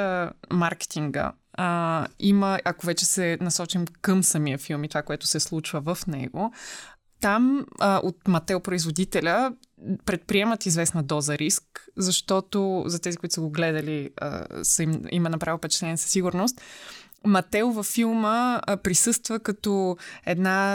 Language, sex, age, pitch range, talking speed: Bulgarian, female, 20-39, 160-205 Hz, 135 wpm